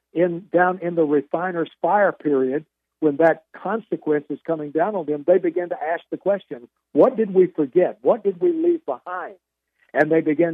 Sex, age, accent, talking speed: male, 60-79, American, 190 wpm